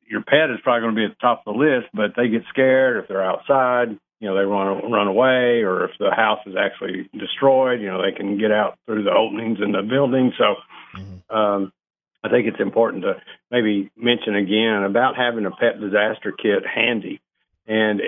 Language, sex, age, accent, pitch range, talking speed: English, male, 50-69, American, 105-120 Hz, 210 wpm